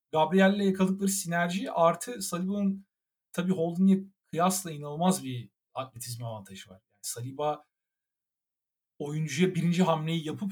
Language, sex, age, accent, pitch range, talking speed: Turkish, male, 40-59, native, 125-185 Hz, 110 wpm